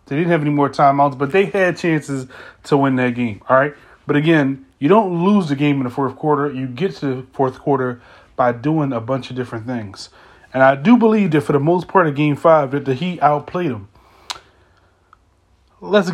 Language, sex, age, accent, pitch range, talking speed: English, male, 30-49, American, 130-170 Hz, 215 wpm